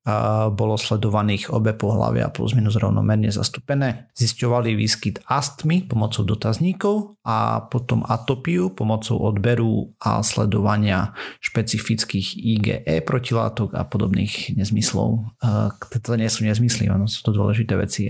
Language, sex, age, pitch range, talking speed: Slovak, male, 40-59, 105-125 Hz, 115 wpm